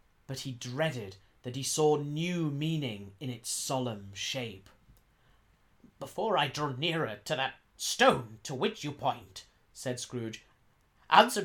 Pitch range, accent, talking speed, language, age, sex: 110-160 Hz, British, 135 wpm, English, 30-49, male